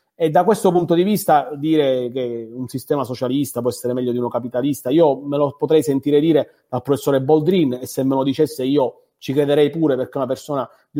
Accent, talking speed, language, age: native, 220 wpm, Italian, 40-59